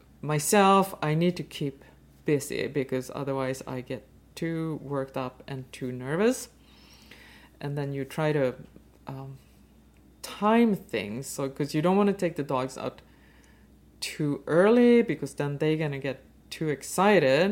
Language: English